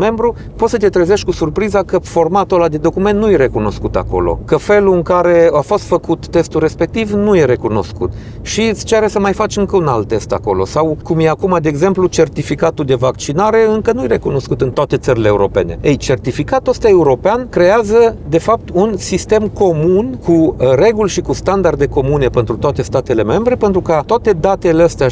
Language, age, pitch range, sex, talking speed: Romanian, 40-59, 125-185 Hz, male, 195 wpm